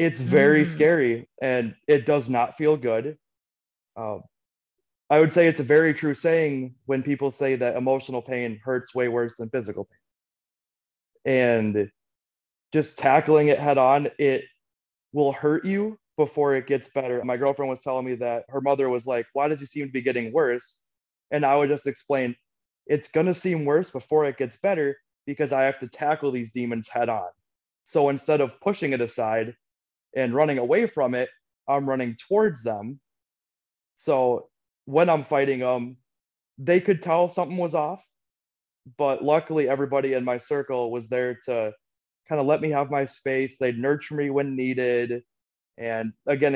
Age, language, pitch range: 20-39, English, 125-150 Hz